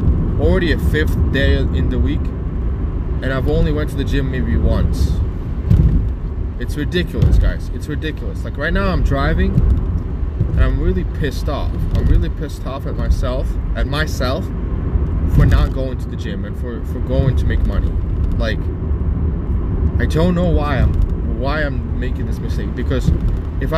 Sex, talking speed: male, 165 wpm